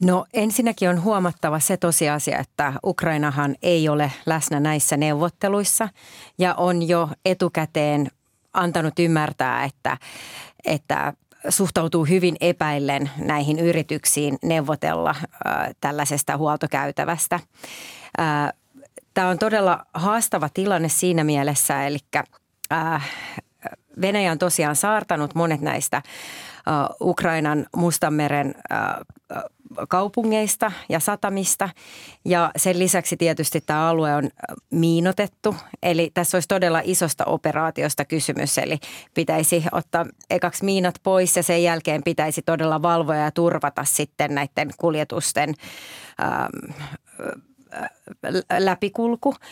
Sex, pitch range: female, 150-185 Hz